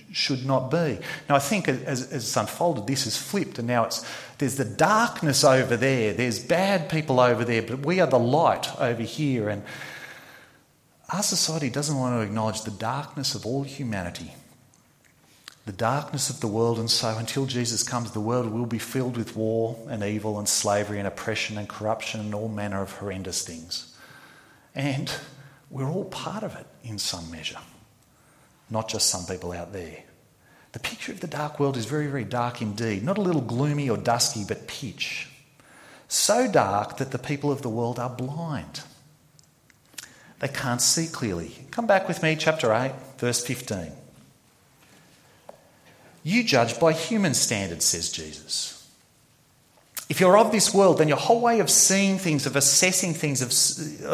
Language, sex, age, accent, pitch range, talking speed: English, male, 40-59, Australian, 110-150 Hz, 170 wpm